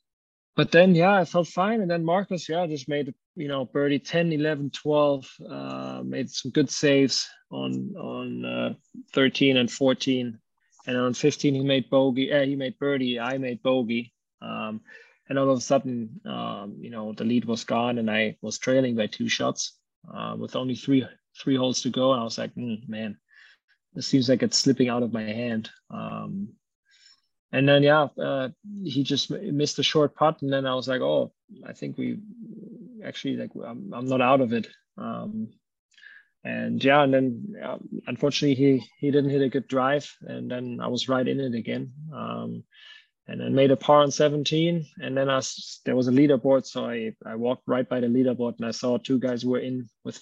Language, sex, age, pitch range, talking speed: English, male, 20-39, 120-150 Hz, 200 wpm